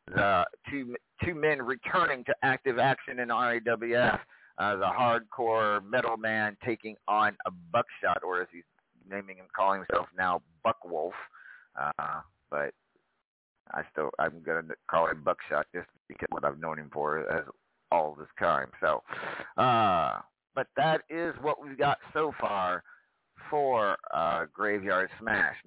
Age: 50-69